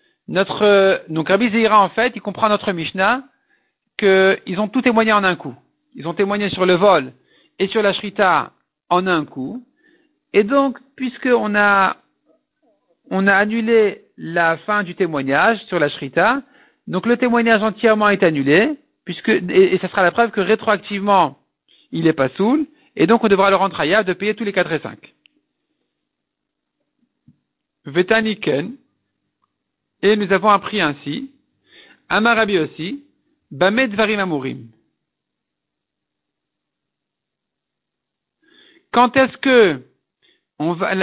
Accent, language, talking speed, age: French, French, 130 wpm, 50-69